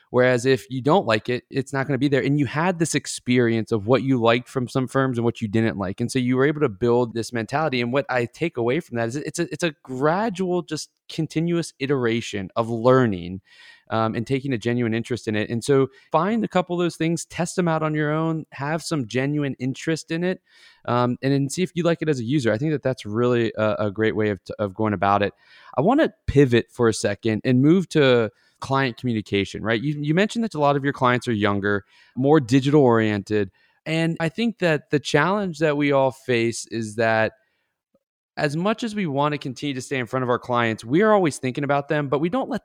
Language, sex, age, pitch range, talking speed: English, male, 20-39, 115-155 Hz, 240 wpm